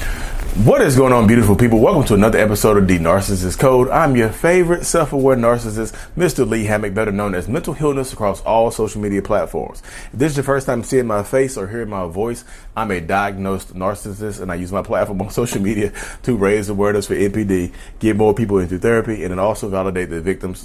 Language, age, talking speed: English, 30-49, 210 wpm